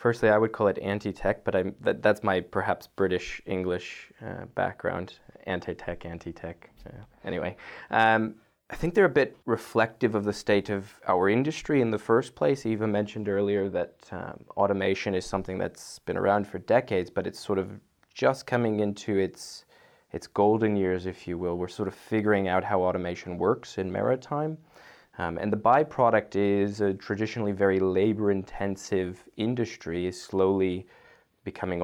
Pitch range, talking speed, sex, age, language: 95-110 Hz, 165 wpm, male, 20-39, English